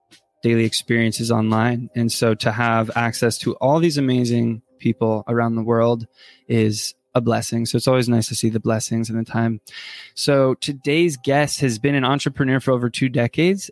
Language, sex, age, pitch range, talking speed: English, male, 20-39, 115-130 Hz, 180 wpm